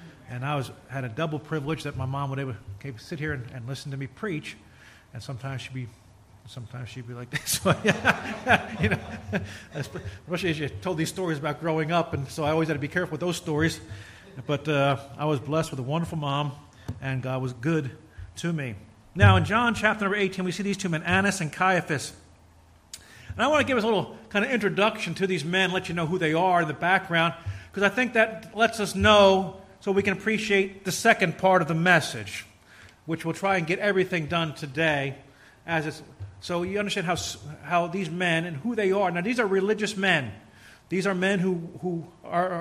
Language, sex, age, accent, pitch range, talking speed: English, male, 40-59, American, 140-190 Hz, 215 wpm